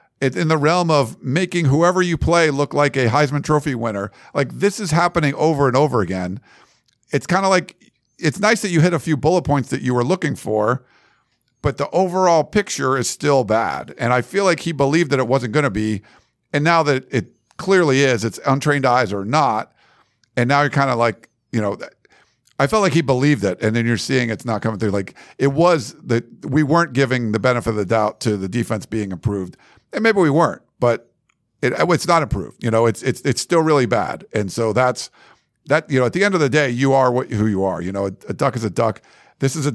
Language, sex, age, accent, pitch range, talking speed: English, male, 50-69, American, 120-150 Hz, 230 wpm